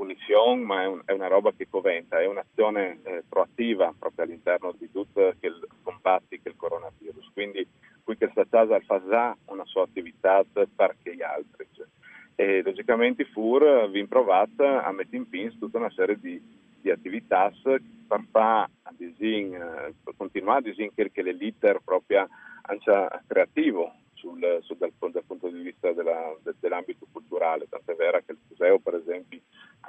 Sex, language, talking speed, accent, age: male, Italian, 160 wpm, native, 40-59